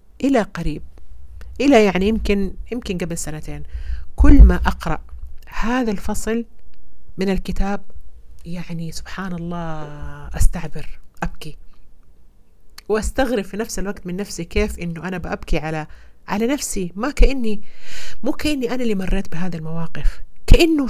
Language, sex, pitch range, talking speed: Arabic, female, 150-195 Hz, 125 wpm